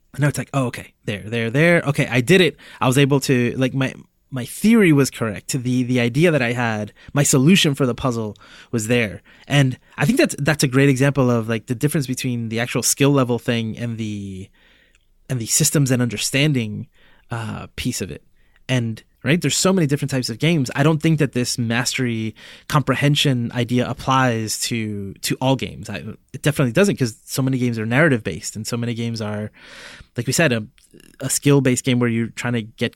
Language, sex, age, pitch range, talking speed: English, male, 20-39, 115-140 Hz, 210 wpm